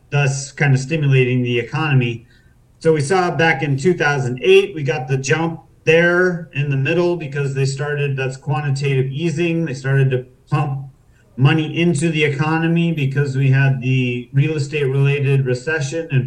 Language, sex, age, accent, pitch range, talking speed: English, male, 40-59, American, 130-160 Hz, 160 wpm